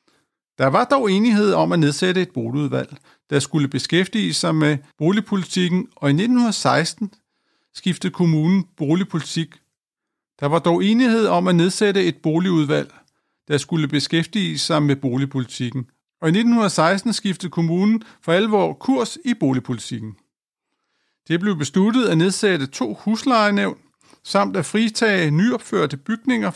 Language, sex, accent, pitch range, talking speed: Danish, male, native, 150-200 Hz, 130 wpm